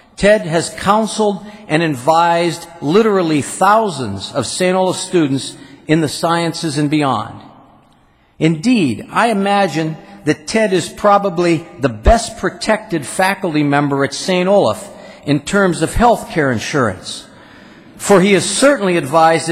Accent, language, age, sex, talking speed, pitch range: American, English, 50-69, male, 130 wpm, 150-195 Hz